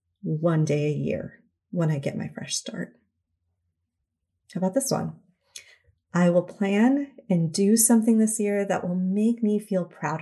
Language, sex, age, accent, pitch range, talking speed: English, female, 30-49, American, 160-205 Hz, 165 wpm